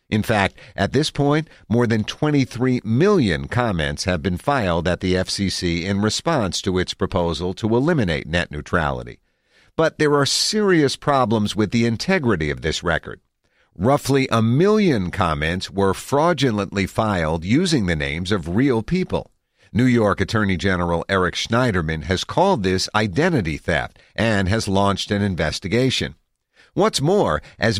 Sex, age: male, 50-69